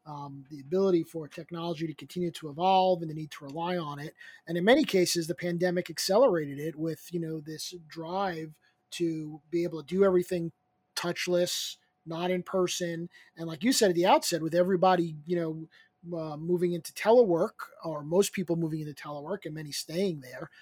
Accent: American